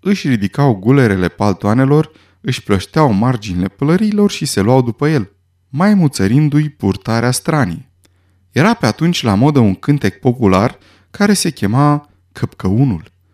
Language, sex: Romanian, male